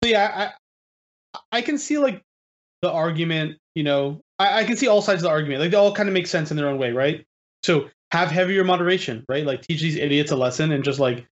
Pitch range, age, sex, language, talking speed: 135-175 Hz, 20-39, male, English, 240 wpm